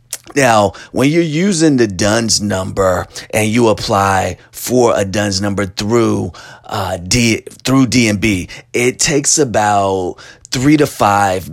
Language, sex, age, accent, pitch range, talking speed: English, male, 30-49, American, 105-130 Hz, 120 wpm